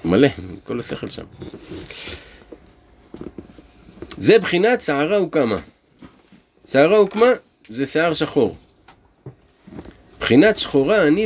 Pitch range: 120-185 Hz